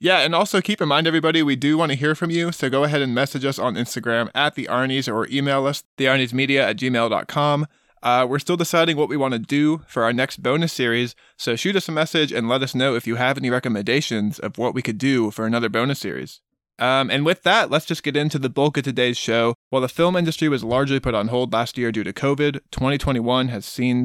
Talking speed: 245 wpm